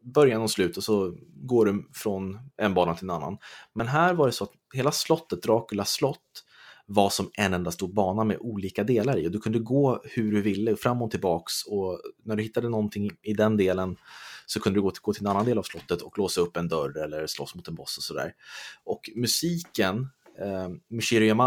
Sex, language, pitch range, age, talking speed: male, Swedish, 95-115 Hz, 30-49, 220 wpm